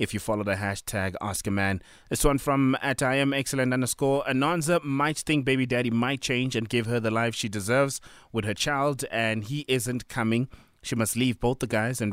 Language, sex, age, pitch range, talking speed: English, male, 20-39, 100-125 Hz, 220 wpm